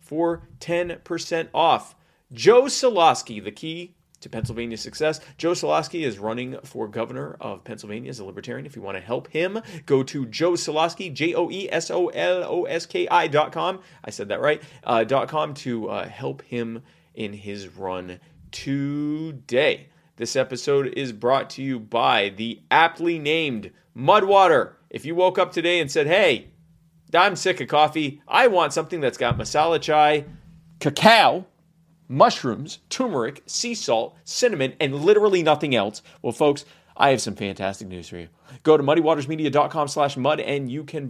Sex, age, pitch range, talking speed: male, 30-49, 105-165 Hz, 155 wpm